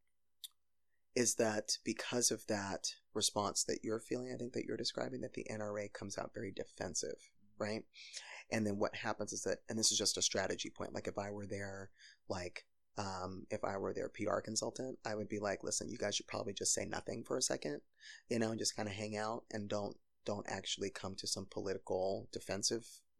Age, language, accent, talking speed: 20-39, English, American, 205 wpm